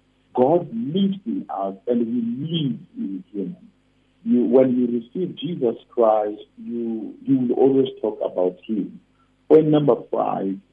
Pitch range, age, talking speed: 105-150 Hz, 50-69, 140 wpm